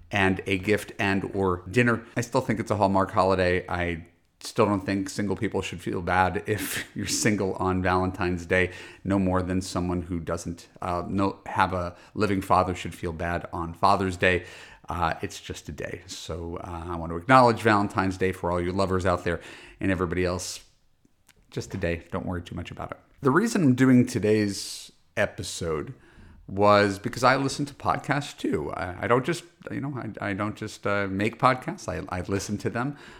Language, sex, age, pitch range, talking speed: English, male, 40-59, 90-105 Hz, 195 wpm